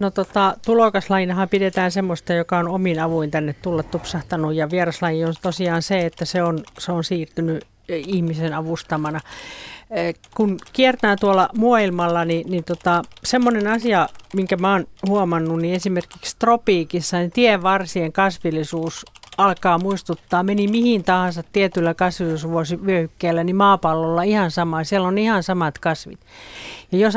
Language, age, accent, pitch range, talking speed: Finnish, 40-59, native, 170-205 Hz, 140 wpm